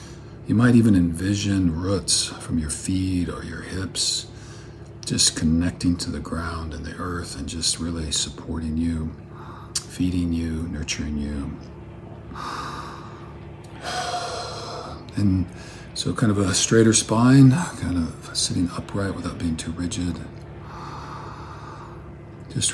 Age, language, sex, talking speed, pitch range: 50-69, English, male, 115 wpm, 85-115 Hz